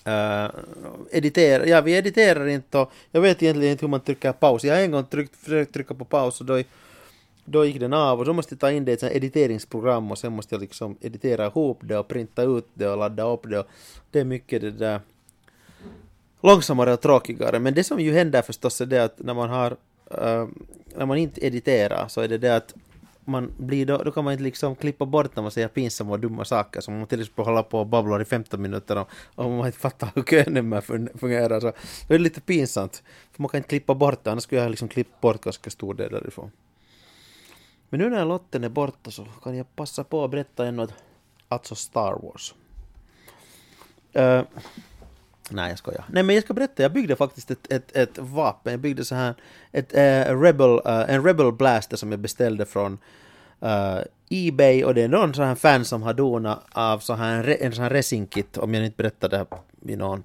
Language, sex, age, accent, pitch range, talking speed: Swedish, male, 30-49, Finnish, 115-145 Hz, 215 wpm